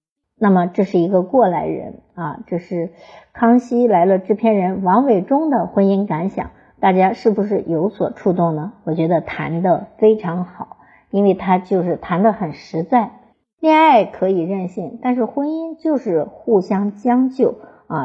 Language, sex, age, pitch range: Chinese, male, 50-69, 170-225 Hz